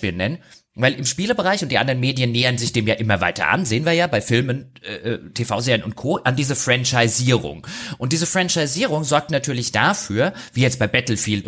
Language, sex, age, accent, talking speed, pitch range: German, male, 30-49, German, 195 wpm, 110-155 Hz